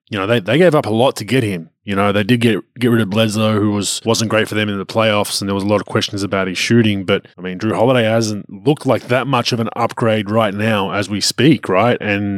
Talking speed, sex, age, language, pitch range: 285 wpm, male, 20-39, English, 105-120 Hz